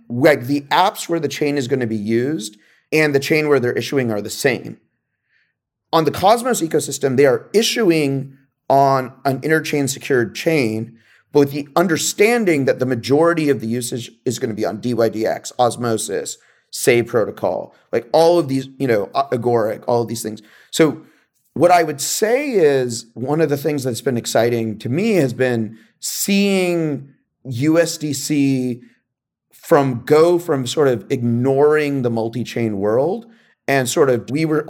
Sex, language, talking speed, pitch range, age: male, English, 165 wpm, 120-160 Hz, 30-49